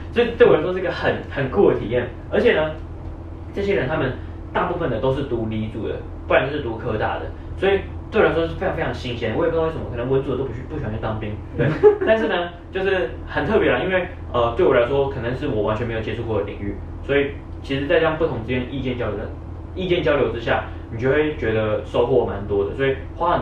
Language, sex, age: Chinese, male, 20-39